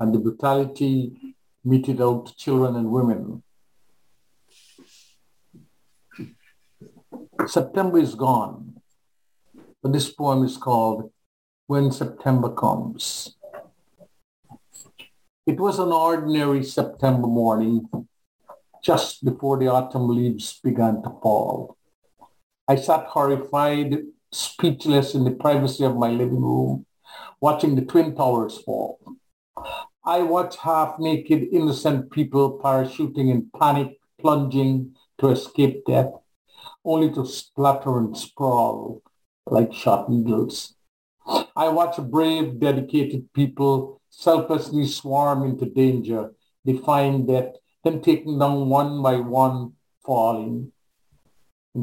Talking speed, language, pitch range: 100 wpm, English, 125-150 Hz